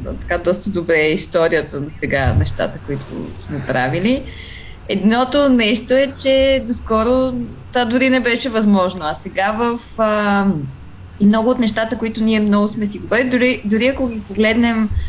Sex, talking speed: female, 155 wpm